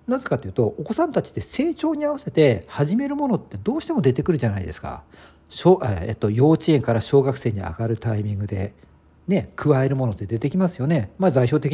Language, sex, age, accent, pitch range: Japanese, male, 50-69, native, 100-165 Hz